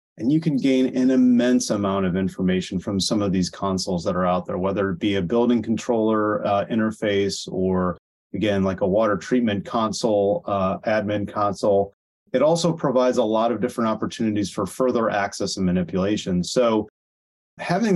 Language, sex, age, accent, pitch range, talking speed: English, male, 30-49, American, 95-115 Hz, 170 wpm